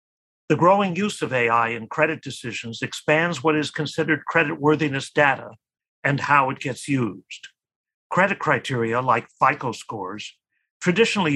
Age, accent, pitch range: 50-69, American, 130-160 Hz